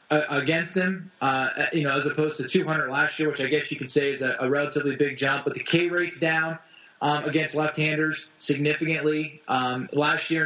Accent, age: American, 20-39